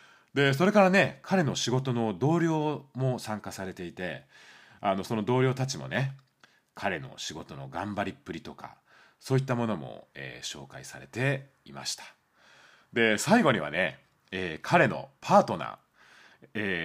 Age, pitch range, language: 30-49, 100-140 Hz, Japanese